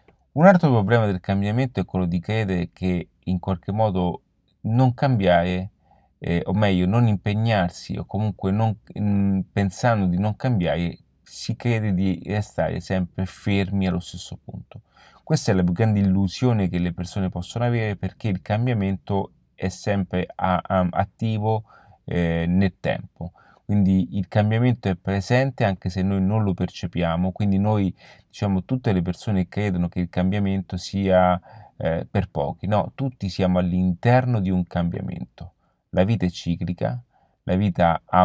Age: 30-49